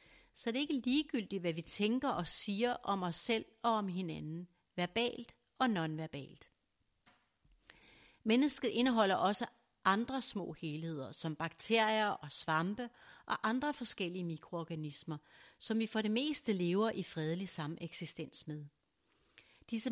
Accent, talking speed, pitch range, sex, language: native, 135 wpm, 170-225 Hz, female, Danish